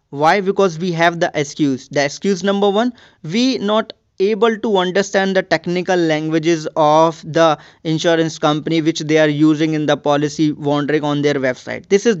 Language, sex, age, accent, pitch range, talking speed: English, male, 20-39, Indian, 155-200 Hz, 170 wpm